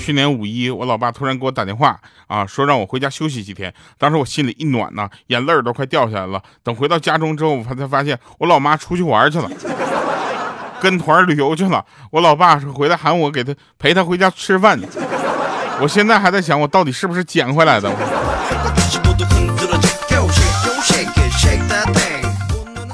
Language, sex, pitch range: Chinese, male, 110-160 Hz